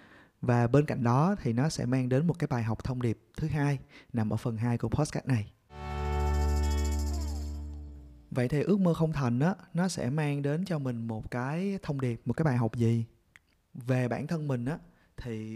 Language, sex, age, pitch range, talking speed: Vietnamese, male, 20-39, 115-155 Hz, 200 wpm